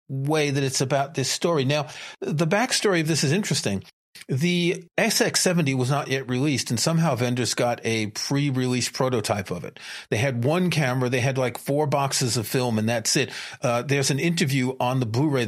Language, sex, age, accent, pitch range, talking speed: English, male, 40-59, American, 125-160 Hz, 195 wpm